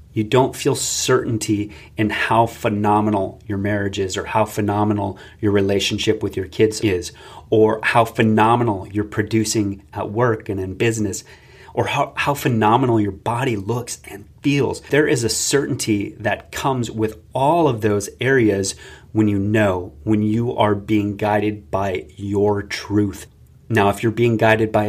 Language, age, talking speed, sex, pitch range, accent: English, 30-49, 160 wpm, male, 100-115 Hz, American